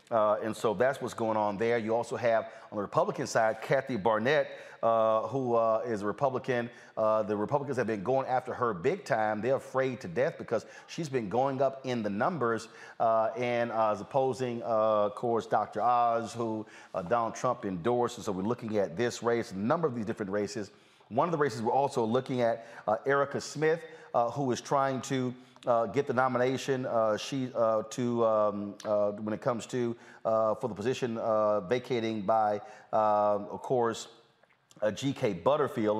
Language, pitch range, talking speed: English, 105-125 Hz, 195 wpm